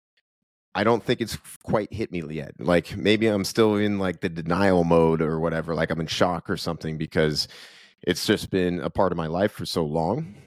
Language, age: English, 30-49